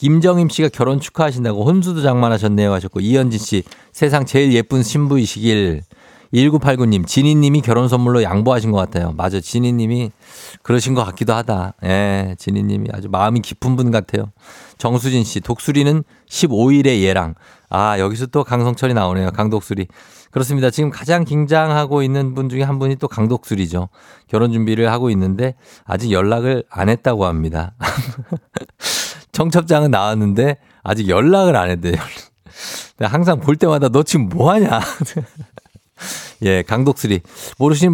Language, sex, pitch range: Korean, male, 105-140 Hz